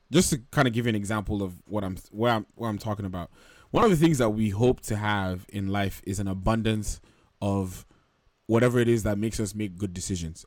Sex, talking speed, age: male, 235 wpm, 20-39